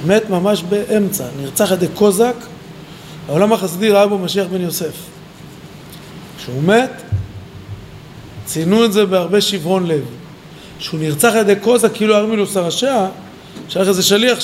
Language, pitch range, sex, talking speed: Hebrew, 165-210 Hz, male, 135 wpm